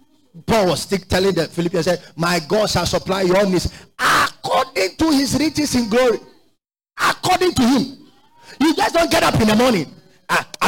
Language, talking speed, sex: English, 170 wpm, male